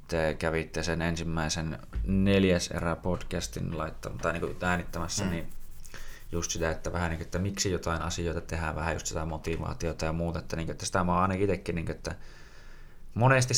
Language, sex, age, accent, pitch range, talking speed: Finnish, male, 20-39, native, 80-95 Hz, 125 wpm